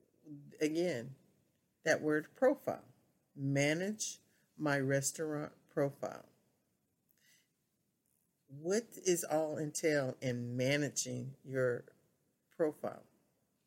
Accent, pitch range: American, 135-170 Hz